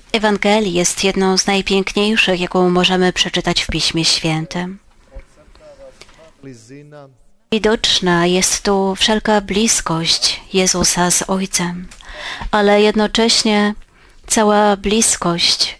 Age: 30-49